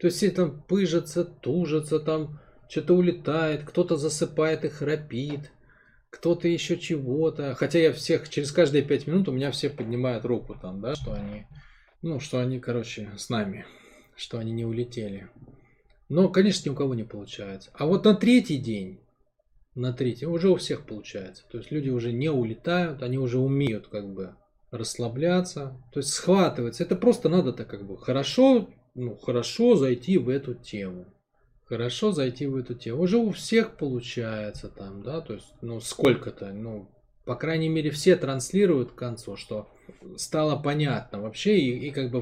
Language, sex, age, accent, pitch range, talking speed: Russian, male, 20-39, native, 120-170 Hz, 170 wpm